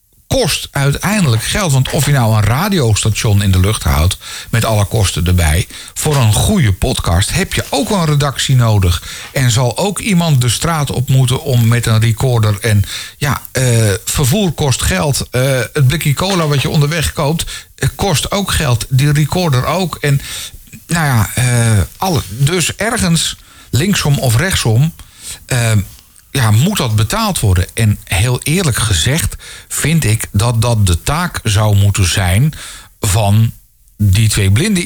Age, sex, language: 50-69, male, Dutch